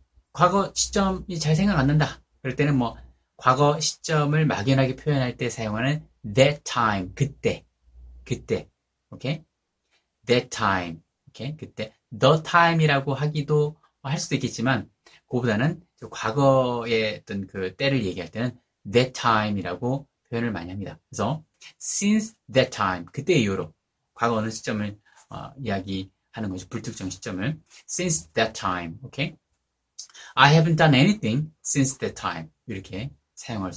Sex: male